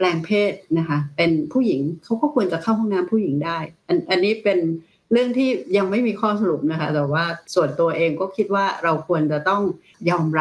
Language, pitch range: Thai, 155-200 Hz